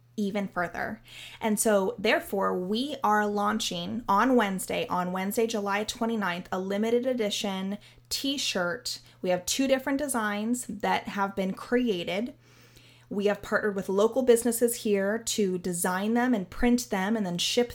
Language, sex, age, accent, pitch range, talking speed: English, female, 20-39, American, 190-235 Hz, 145 wpm